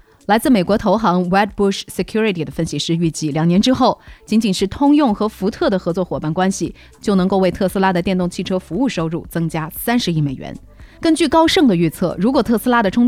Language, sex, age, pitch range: Chinese, female, 30-49, 175-230 Hz